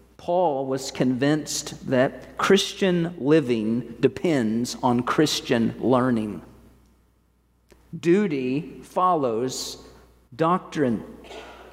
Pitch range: 145-215 Hz